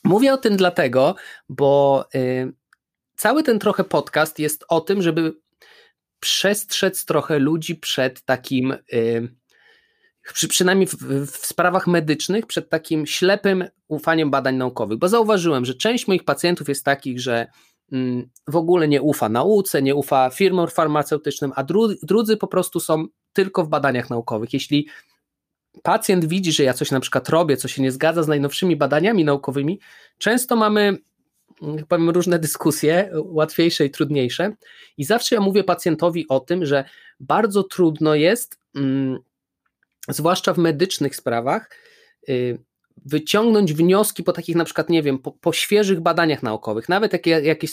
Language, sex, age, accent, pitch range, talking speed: Polish, male, 20-39, native, 145-195 Hz, 140 wpm